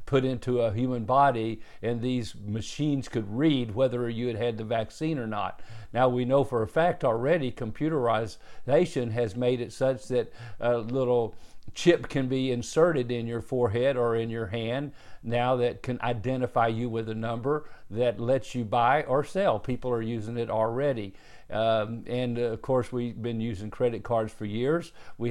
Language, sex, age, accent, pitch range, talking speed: English, male, 50-69, American, 115-130 Hz, 180 wpm